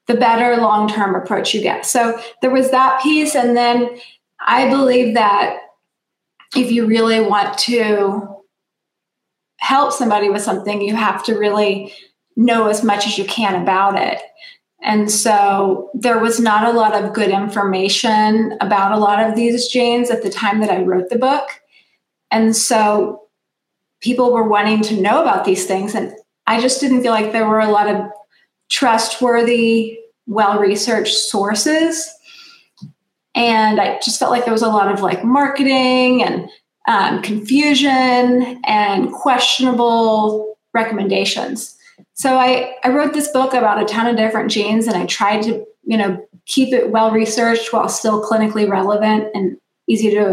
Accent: American